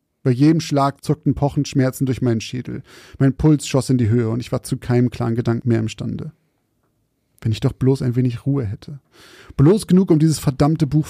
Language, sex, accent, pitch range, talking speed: German, male, German, 115-135 Hz, 205 wpm